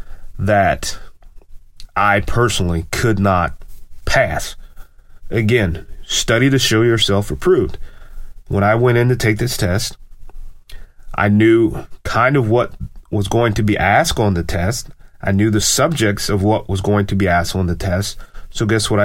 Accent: American